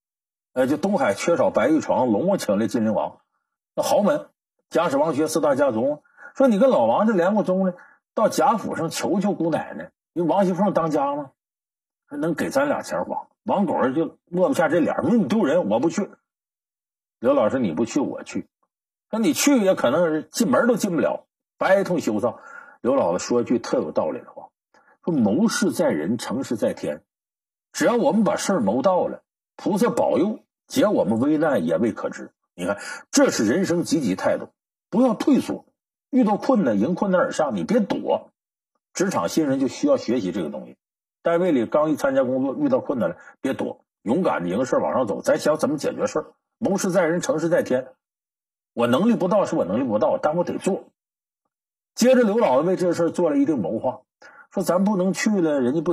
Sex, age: male, 50-69